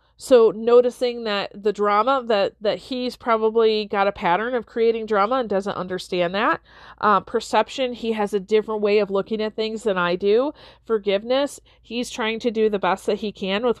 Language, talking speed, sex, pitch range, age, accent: English, 190 wpm, female, 205-255 Hz, 40-59, American